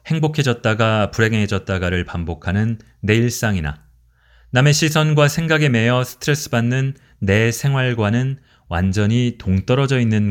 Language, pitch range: Korean, 95-130 Hz